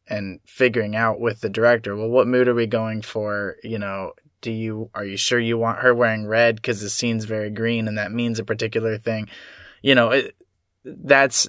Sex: male